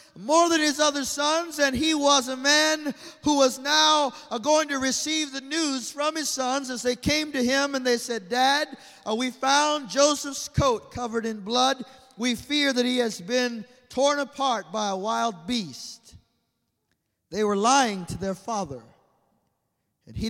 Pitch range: 235-290 Hz